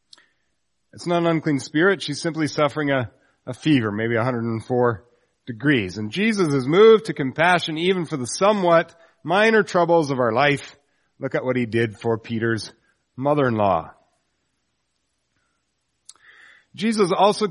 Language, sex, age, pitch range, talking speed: English, male, 40-59, 140-195 Hz, 135 wpm